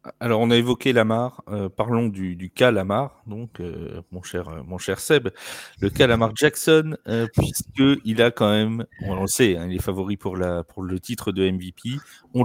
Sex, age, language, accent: male, 30-49, French, French